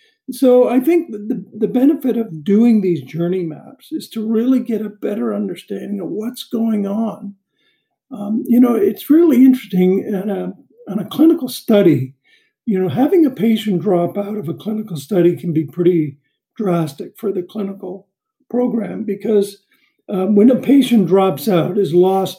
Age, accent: 50-69, American